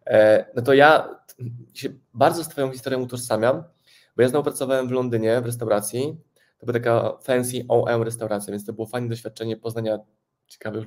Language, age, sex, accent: Polish, 20-39, male, native